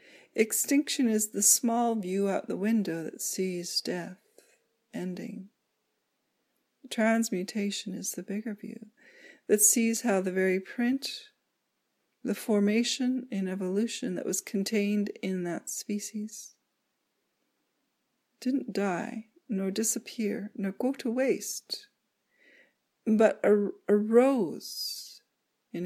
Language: English